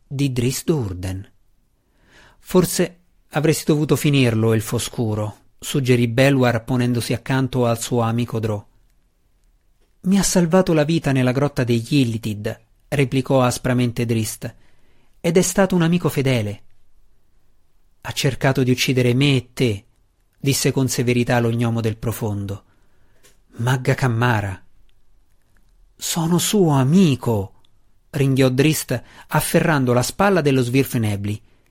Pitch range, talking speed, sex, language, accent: 110-140 Hz, 115 wpm, male, Italian, native